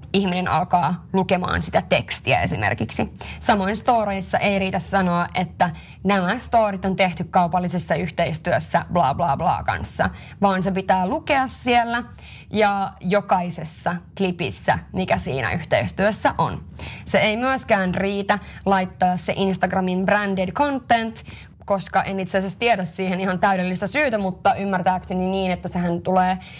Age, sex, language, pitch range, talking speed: 20-39, female, Finnish, 180-200 Hz, 130 wpm